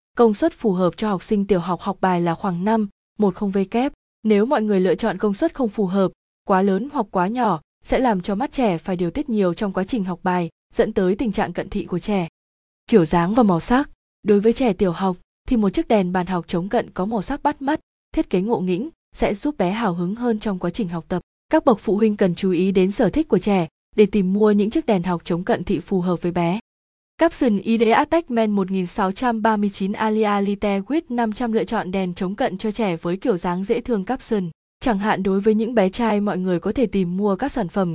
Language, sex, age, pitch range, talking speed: Vietnamese, female, 20-39, 185-230 Hz, 240 wpm